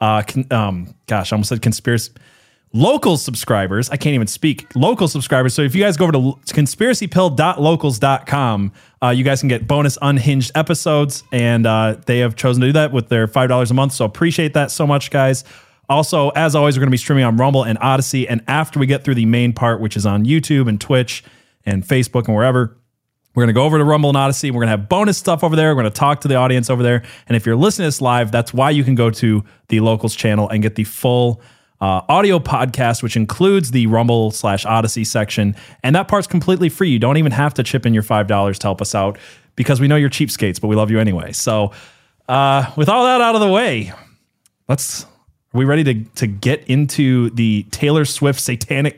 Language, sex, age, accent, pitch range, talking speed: English, male, 20-39, American, 115-145 Hz, 230 wpm